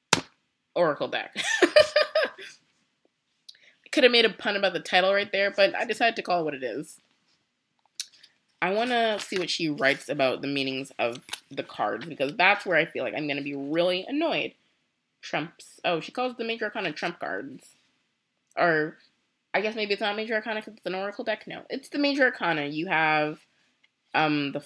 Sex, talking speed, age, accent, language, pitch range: female, 190 wpm, 20-39, American, English, 160-230 Hz